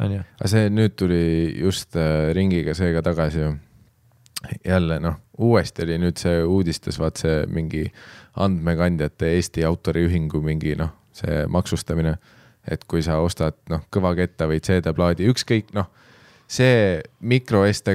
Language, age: English, 20-39